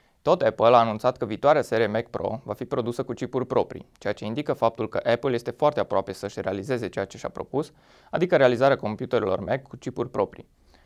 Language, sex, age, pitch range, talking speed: Romanian, male, 20-39, 105-130 Hz, 205 wpm